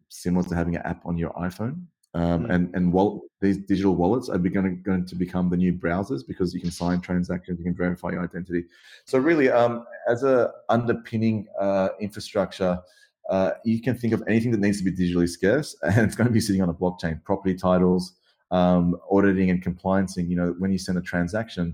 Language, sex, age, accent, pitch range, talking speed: English, male, 30-49, Australian, 85-95 Hz, 205 wpm